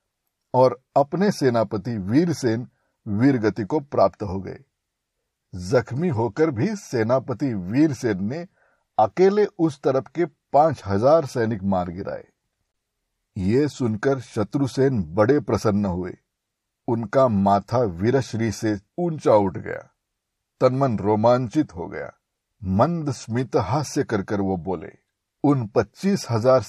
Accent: native